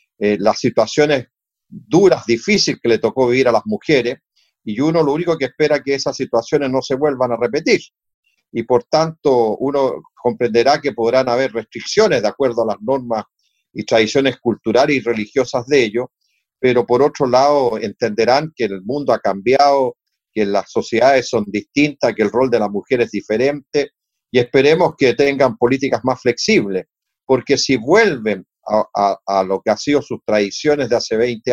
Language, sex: Spanish, male